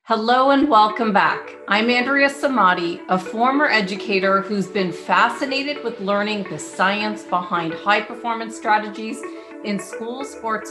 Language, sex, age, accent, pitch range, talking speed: English, female, 40-59, American, 180-225 Hz, 135 wpm